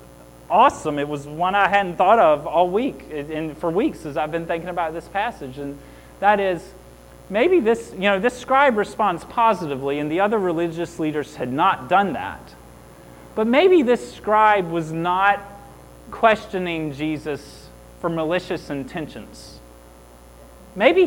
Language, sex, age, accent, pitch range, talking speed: English, male, 30-49, American, 110-180 Hz, 150 wpm